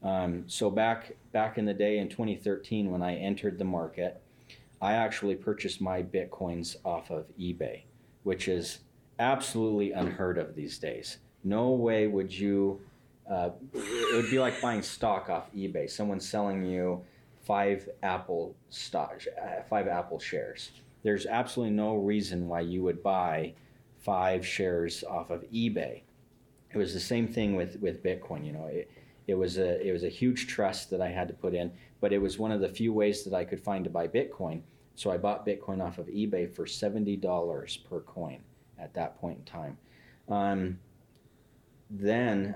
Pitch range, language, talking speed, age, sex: 90-105 Hz, English, 170 wpm, 40-59, male